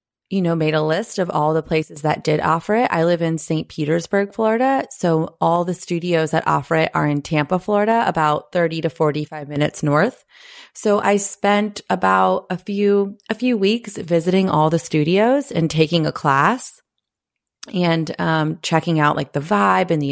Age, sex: 30-49, female